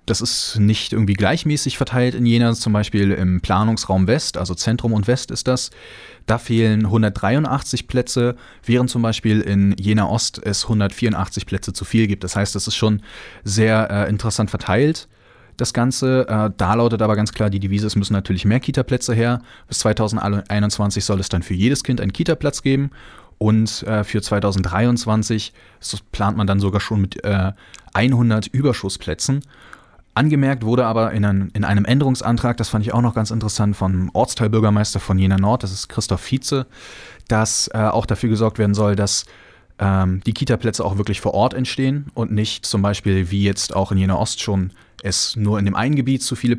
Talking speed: 180 wpm